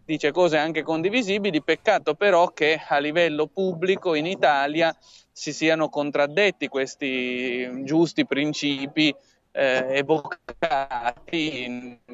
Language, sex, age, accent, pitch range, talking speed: Italian, male, 20-39, native, 140-170 Hz, 100 wpm